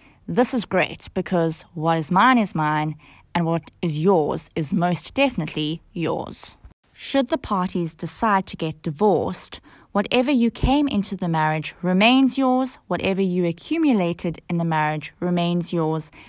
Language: English